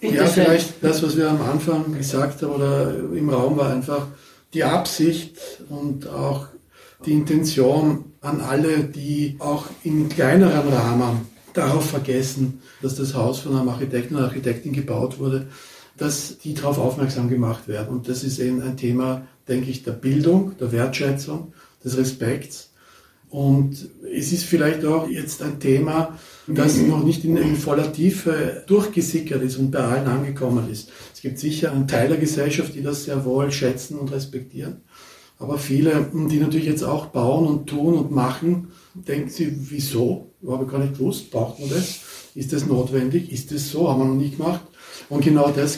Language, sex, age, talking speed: German, male, 60-79, 175 wpm